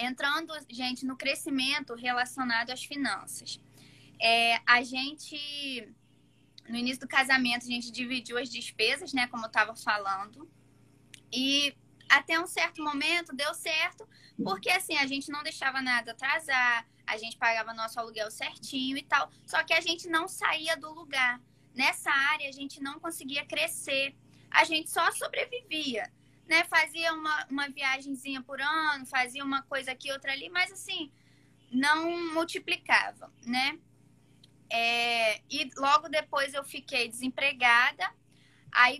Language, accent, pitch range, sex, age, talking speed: Portuguese, Brazilian, 240-305 Hz, female, 10-29, 140 wpm